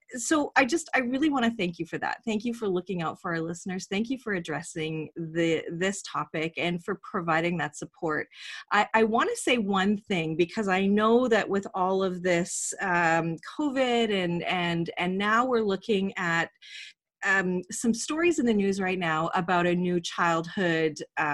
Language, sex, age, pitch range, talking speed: English, female, 30-49, 175-225 Hz, 185 wpm